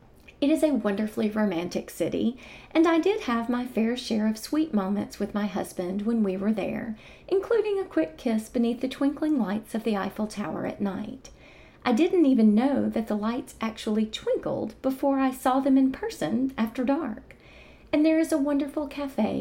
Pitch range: 210-265 Hz